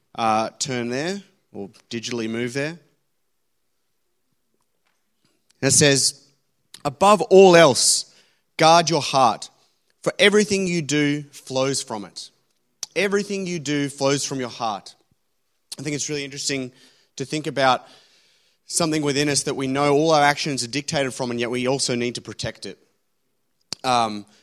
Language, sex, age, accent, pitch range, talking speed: English, male, 30-49, Australian, 120-155 Hz, 140 wpm